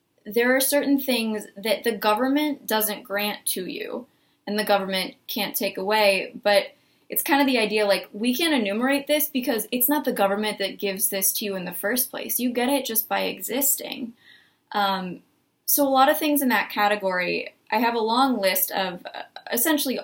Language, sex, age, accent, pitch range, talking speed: English, female, 20-39, American, 200-275 Hz, 190 wpm